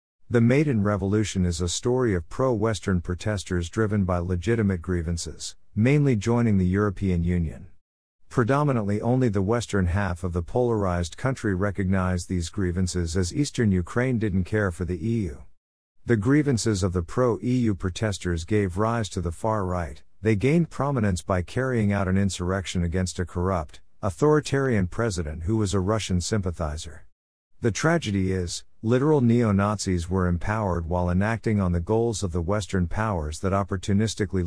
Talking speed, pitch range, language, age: 150 wpm, 90-110 Hz, English, 50-69